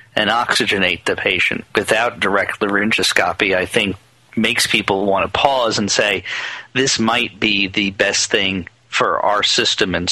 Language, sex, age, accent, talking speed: English, male, 40-59, American, 155 wpm